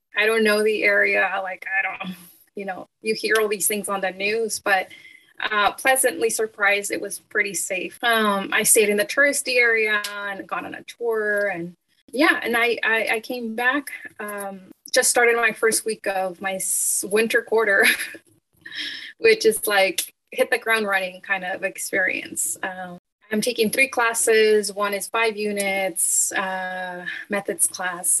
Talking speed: 165 wpm